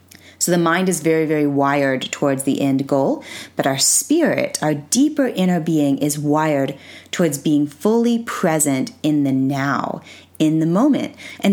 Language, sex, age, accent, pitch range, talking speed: English, female, 30-49, American, 145-190 Hz, 160 wpm